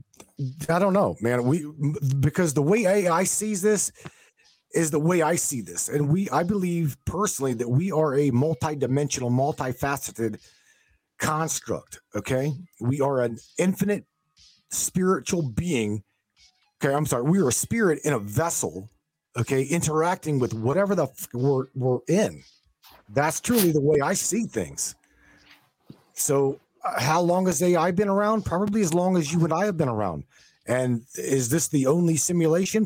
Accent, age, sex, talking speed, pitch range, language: American, 40-59, male, 160 wpm, 125-175 Hz, English